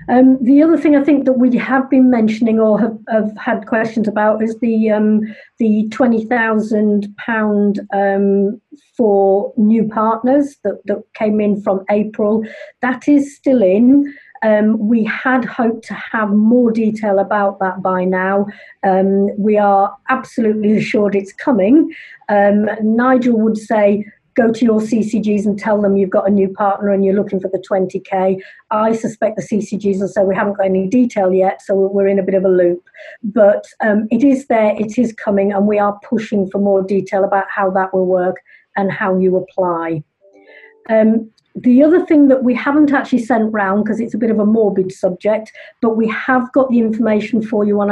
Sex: female